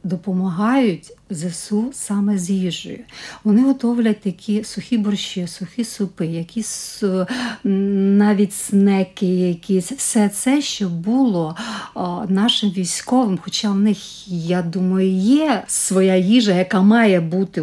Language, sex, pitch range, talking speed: Ukrainian, female, 185-225 Hz, 115 wpm